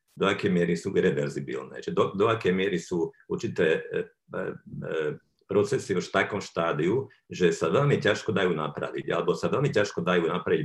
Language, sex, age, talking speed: Slovak, male, 50-69, 175 wpm